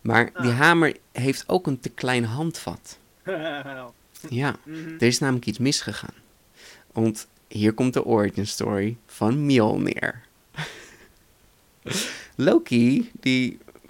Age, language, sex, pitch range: 20-39, Dutch, male, 110-135 Hz